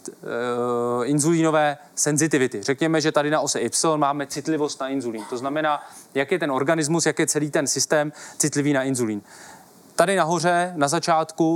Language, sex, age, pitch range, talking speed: Czech, male, 20-39, 140-170 Hz, 155 wpm